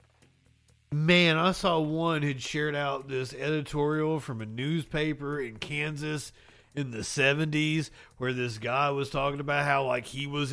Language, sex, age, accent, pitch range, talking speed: English, male, 40-59, American, 125-160 Hz, 155 wpm